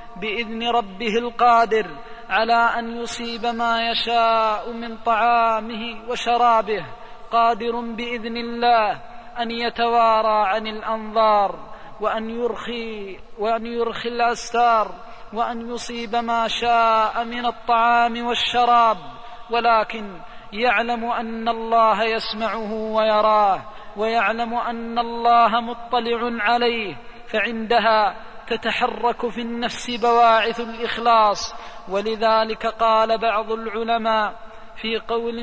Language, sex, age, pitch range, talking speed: Arabic, male, 20-39, 220-235 Hz, 90 wpm